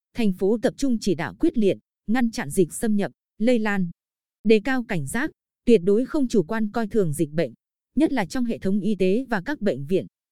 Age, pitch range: 20-39, 185-240 Hz